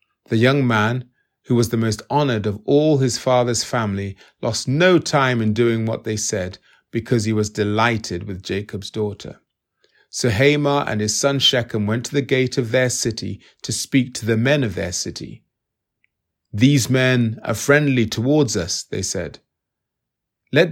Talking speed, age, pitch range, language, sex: 170 wpm, 30-49, 110-135 Hz, English, male